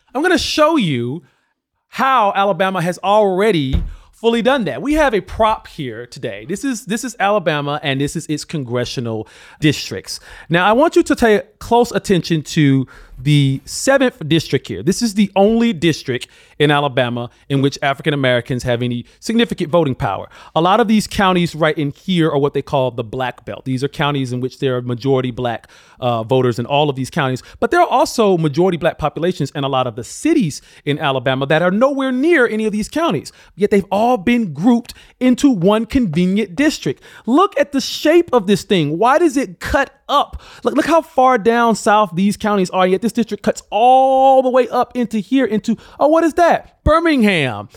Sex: male